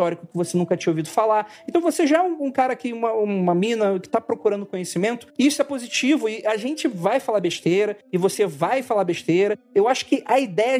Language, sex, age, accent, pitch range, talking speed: Portuguese, male, 40-59, Brazilian, 190-240 Hz, 220 wpm